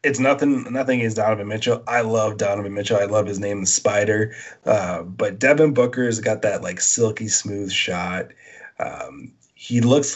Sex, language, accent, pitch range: male, English, American, 105-120 Hz